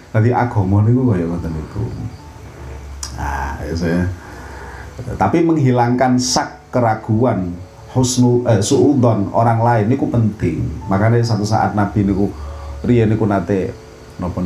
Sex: male